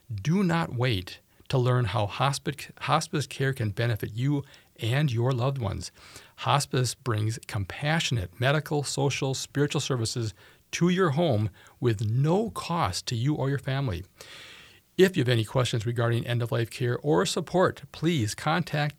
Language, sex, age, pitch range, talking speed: English, male, 40-59, 110-145 Hz, 145 wpm